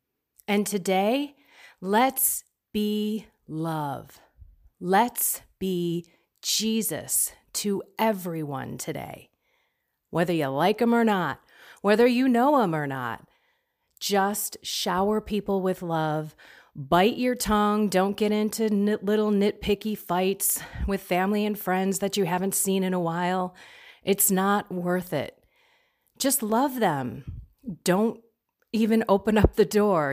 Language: English